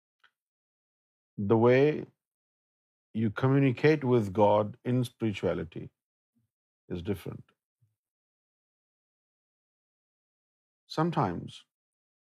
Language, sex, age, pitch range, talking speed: Urdu, male, 50-69, 100-130 Hz, 55 wpm